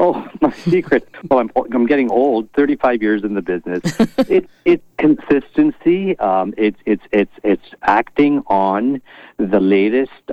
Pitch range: 95-125 Hz